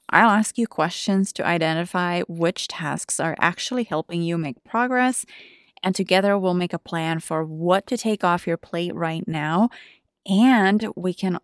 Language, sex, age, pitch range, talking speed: English, female, 20-39, 160-195 Hz, 170 wpm